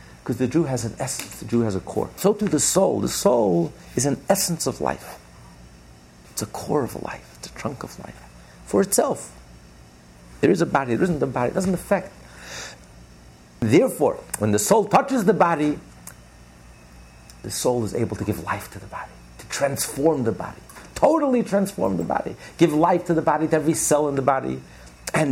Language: English